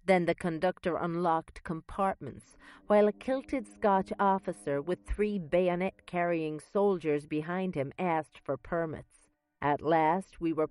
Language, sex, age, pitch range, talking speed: English, female, 40-59, 145-190 Hz, 130 wpm